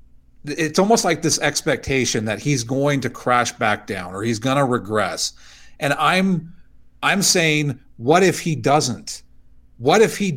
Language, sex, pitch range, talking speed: English, male, 110-160 Hz, 160 wpm